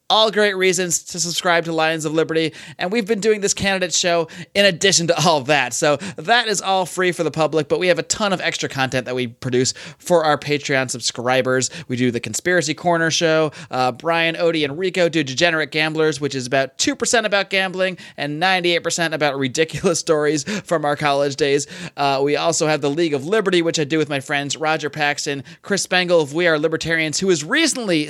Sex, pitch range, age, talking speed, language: male, 140-185 Hz, 30-49, 210 wpm, English